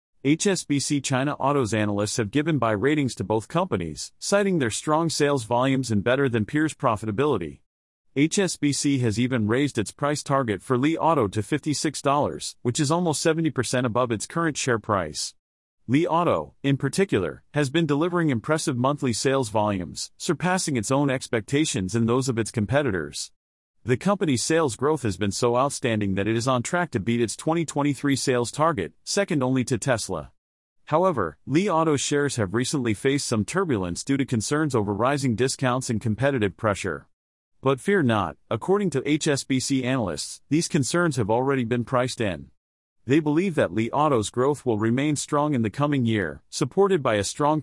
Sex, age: male, 40-59